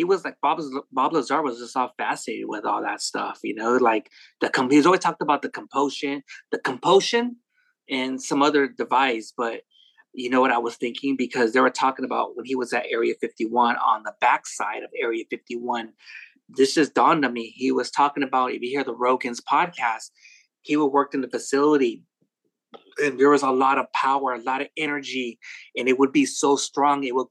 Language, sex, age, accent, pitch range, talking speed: English, male, 30-49, American, 125-170 Hz, 205 wpm